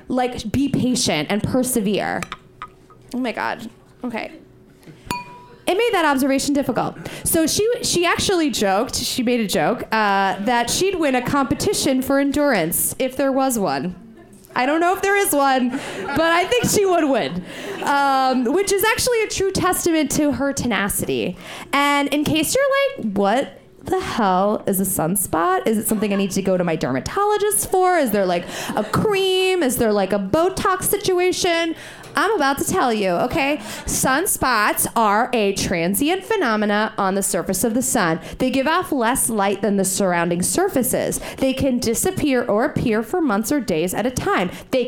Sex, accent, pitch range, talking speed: female, American, 210-335 Hz, 175 wpm